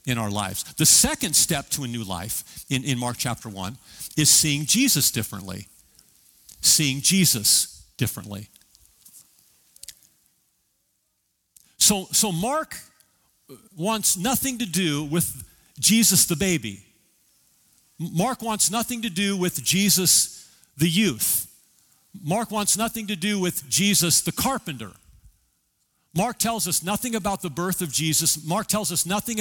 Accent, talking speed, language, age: American, 130 wpm, English, 50-69